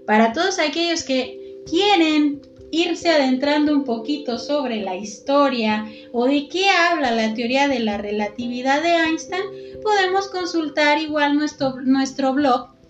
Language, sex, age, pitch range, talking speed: Spanish, female, 20-39, 240-315 Hz, 135 wpm